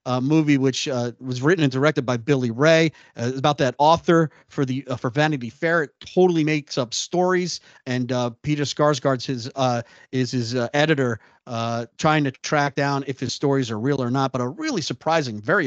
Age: 40-59